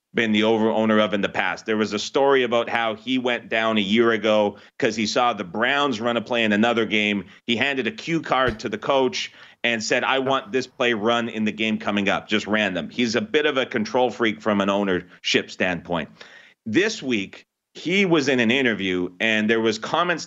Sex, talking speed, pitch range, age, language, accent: male, 220 wpm, 110-130 Hz, 40-59, English, American